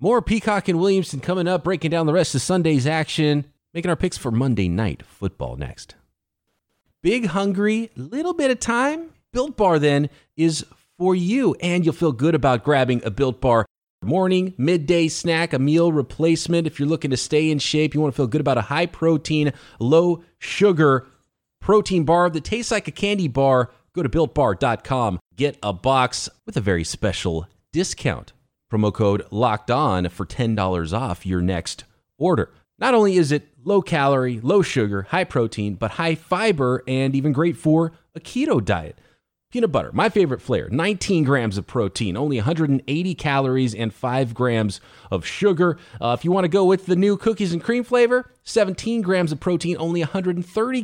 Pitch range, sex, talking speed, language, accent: 130-185 Hz, male, 180 wpm, English, American